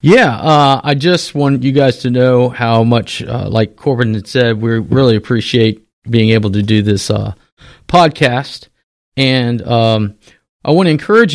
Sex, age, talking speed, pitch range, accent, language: male, 40-59, 170 wpm, 115-145 Hz, American, English